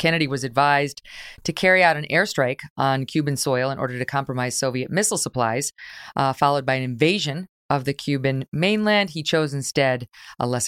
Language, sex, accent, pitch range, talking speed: English, female, American, 125-165 Hz, 180 wpm